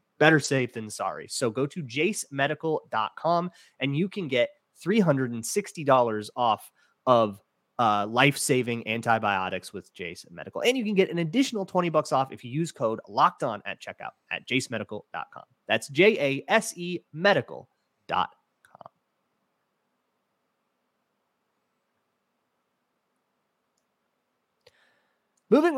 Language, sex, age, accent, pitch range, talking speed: English, male, 30-49, American, 110-170 Hz, 100 wpm